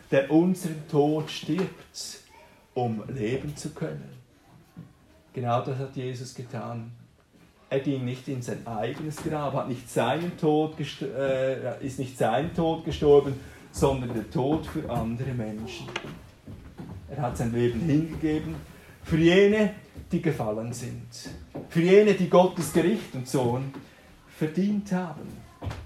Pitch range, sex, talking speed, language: 130-185 Hz, male, 120 wpm, German